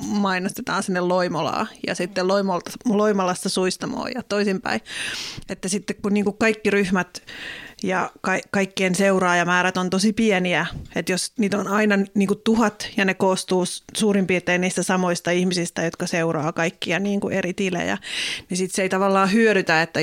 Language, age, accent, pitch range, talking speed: Finnish, 30-49, native, 175-205 Hz, 150 wpm